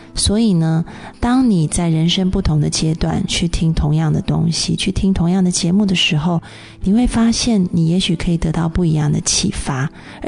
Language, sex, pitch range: Chinese, female, 160-190 Hz